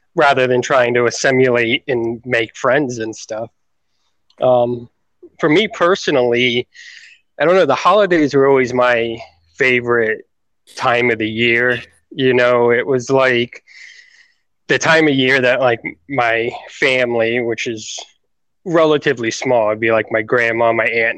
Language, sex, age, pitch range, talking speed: English, male, 20-39, 115-135 Hz, 145 wpm